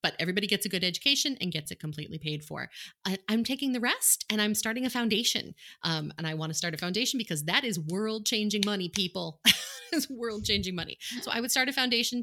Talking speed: 230 wpm